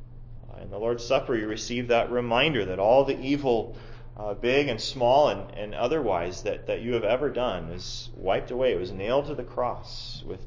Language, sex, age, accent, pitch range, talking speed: English, male, 30-49, American, 115-125 Hz, 200 wpm